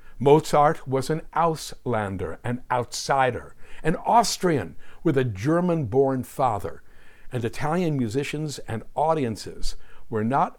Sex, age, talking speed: male, 60-79, 110 wpm